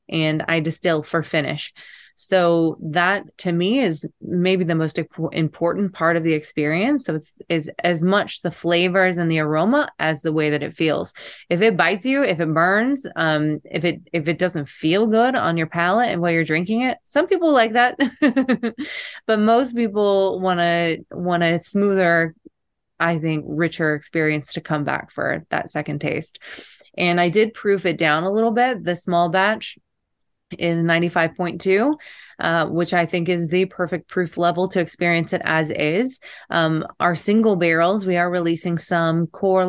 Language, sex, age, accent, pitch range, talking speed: English, female, 20-39, American, 160-185 Hz, 175 wpm